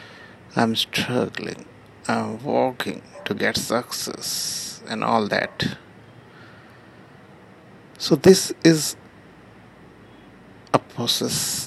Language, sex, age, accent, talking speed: English, male, 60-79, Indian, 75 wpm